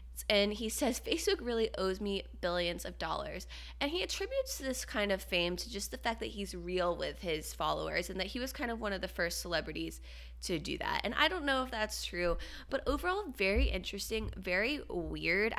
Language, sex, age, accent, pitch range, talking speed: English, female, 20-39, American, 175-275 Hz, 210 wpm